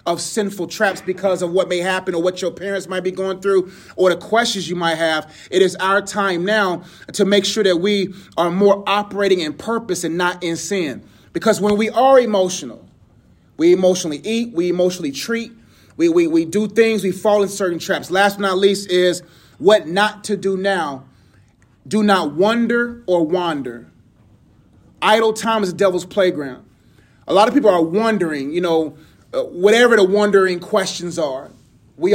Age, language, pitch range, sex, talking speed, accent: 30-49, English, 175-210 Hz, male, 185 wpm, American